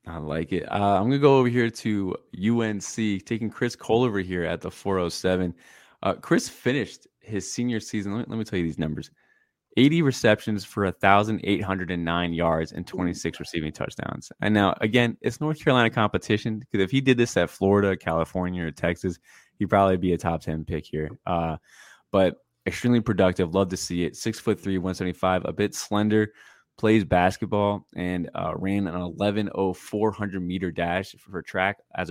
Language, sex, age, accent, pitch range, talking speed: English, male, 20-39, American, 85-105 Hz, 185 wpm